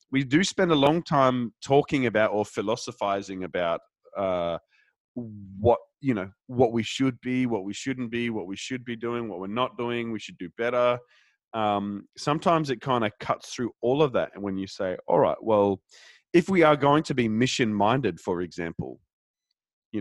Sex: male